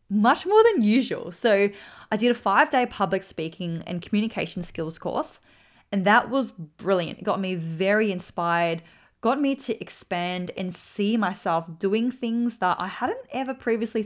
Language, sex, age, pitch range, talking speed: English, female, 20-39, 180-215 Hz, 160 wpm